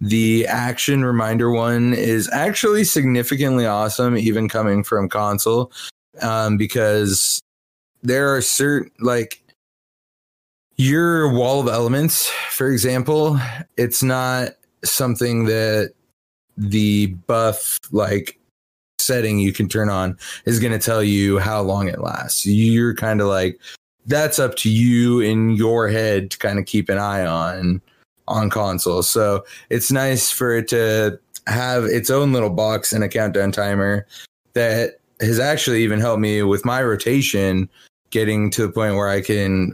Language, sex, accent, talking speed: English, male, American, 145 wpm